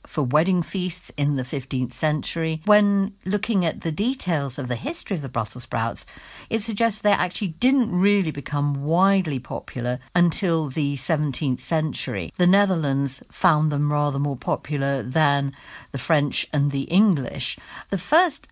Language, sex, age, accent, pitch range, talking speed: English, female, 50-69, British, 140-200 Hz, 150 wpm